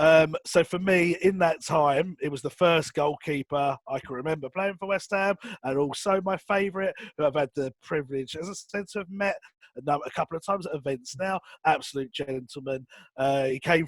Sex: male